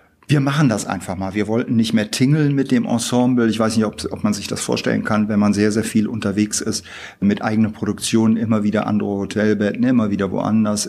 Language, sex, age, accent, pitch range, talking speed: German, male, 50-69, German, 105-120 Hz, 220 wpm